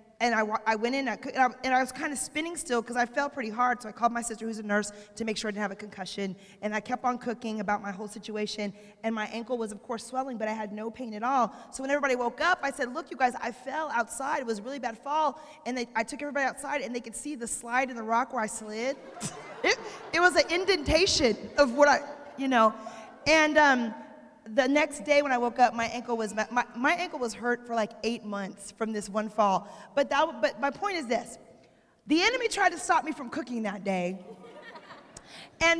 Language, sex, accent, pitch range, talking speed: English, female, American, 225-290 Hz, 245 wpm